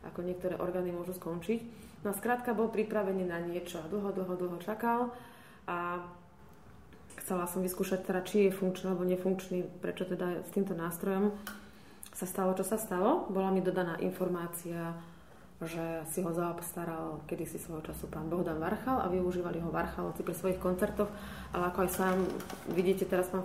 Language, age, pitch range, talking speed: Slovak, 20-39, 175-205 Hz, 165 wpm